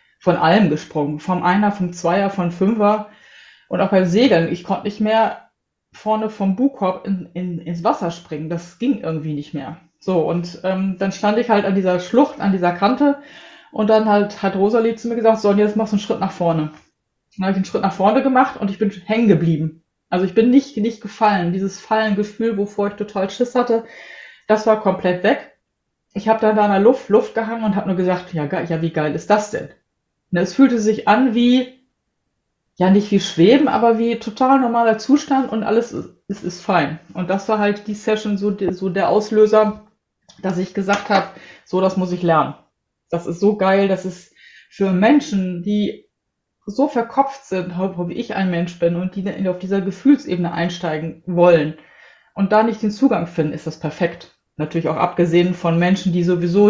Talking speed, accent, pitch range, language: 200 wpm, German, 175-220 Hz, German